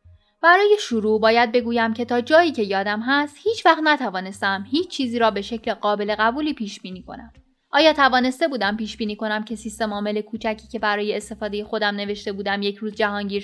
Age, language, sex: 10-29, Persian, female